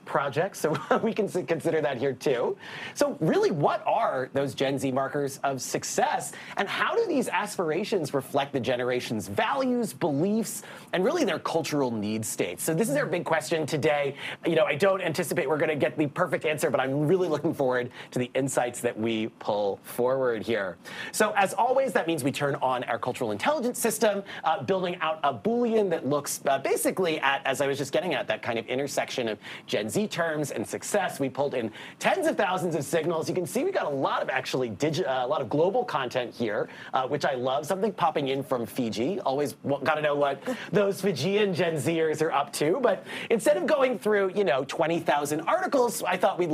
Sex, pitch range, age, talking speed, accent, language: male, 135-200 Hz, 30-49, 210 wpm, American, English